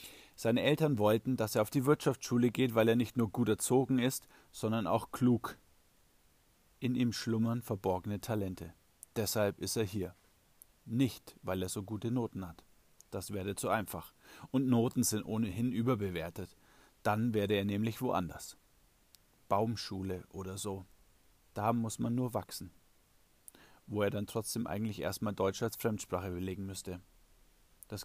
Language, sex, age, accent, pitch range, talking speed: German, male, 40-59, German, 95-115 Hz, 150 wpm